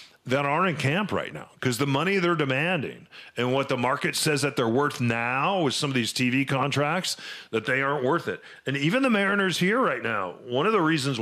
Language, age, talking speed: English, 40-59, 225 wpm